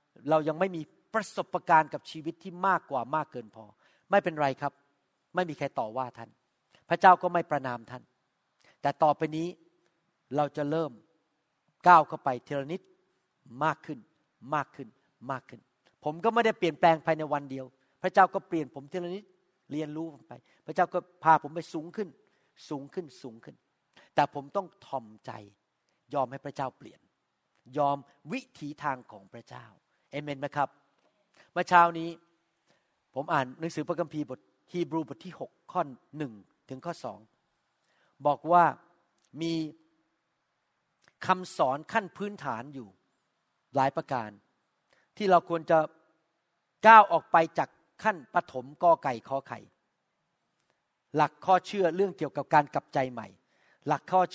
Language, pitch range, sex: Thai, 140-175 Hz, male